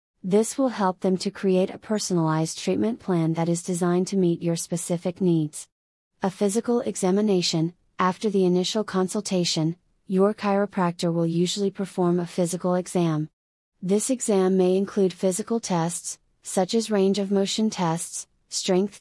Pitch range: 175-200 Hz